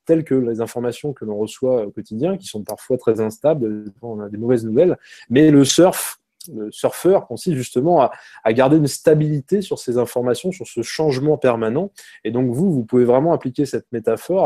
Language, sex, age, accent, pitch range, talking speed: French, male, 20-39, French, 115-150 Hz, 190 wpm